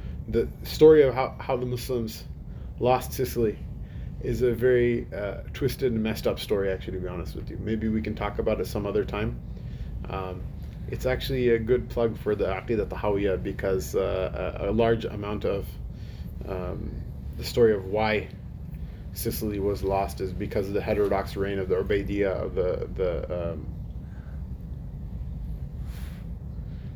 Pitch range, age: 95-115 Hz, 30-49